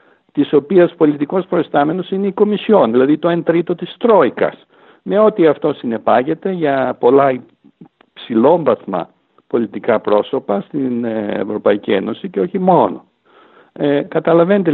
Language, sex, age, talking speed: English, male, 60-79, 120 wpm